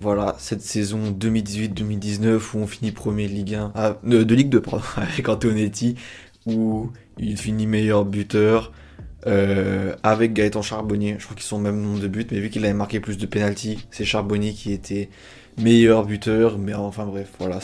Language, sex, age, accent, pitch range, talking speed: French, male, 20-39, French, 105-125 Hz, 185 wpm